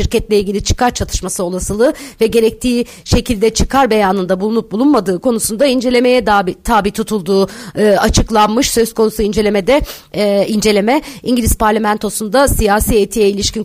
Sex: female